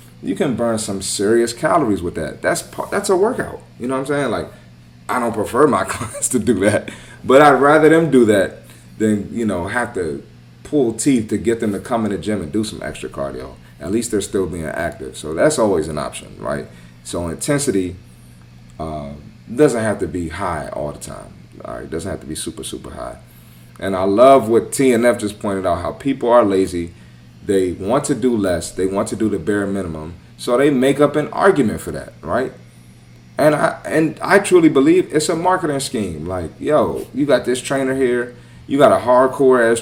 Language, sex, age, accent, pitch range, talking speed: English, male, 30-49, American, 80-135 Hz, 210 wpm